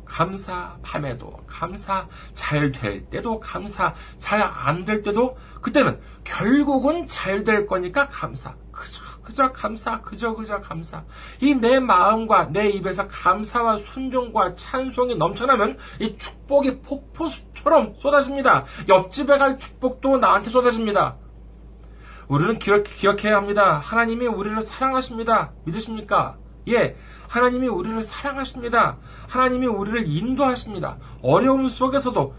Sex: male